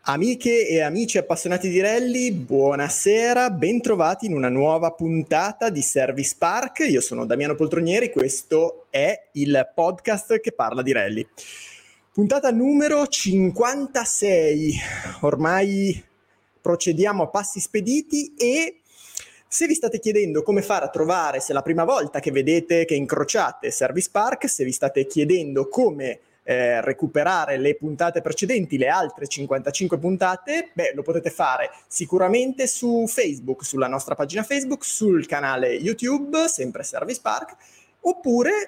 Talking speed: 135 wpm